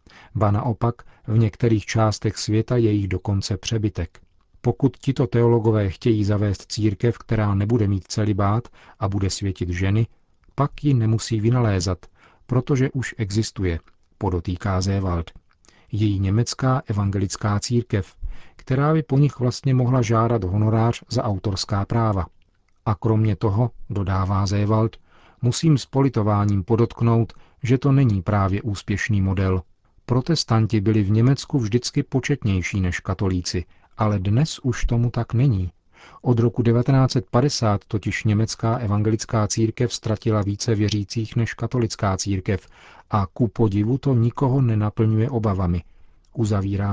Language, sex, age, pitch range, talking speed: Czech, male, 40-59, 100-120 Hz, 125 wpm